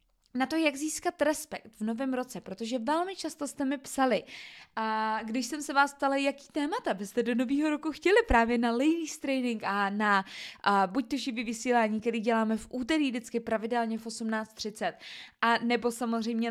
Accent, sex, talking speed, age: native, female, 170 wpm, 20-39